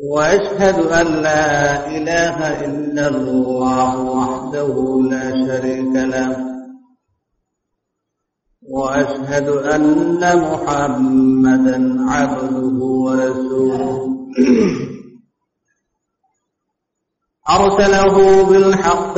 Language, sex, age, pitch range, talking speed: Bengali, male, 50-69, 130-175 Hz, 55 wpm